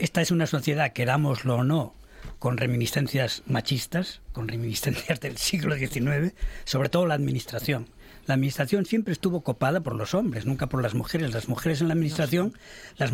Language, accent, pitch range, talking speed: Spanish, Spanish, 140-185 Hz, 170 wpm